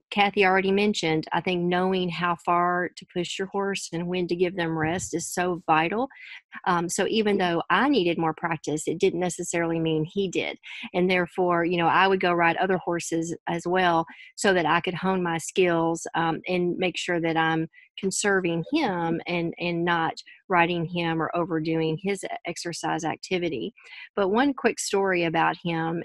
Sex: female